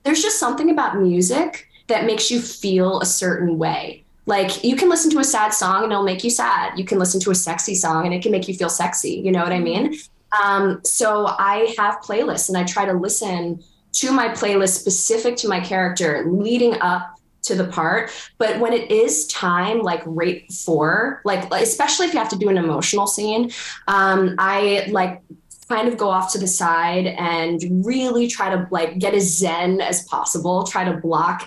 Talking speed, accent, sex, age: 205 wpm, American, female, 20-39